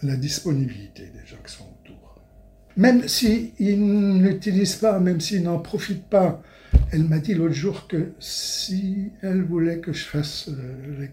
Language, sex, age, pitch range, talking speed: English, male, 60-79, 130-160 Hz, 155 wpm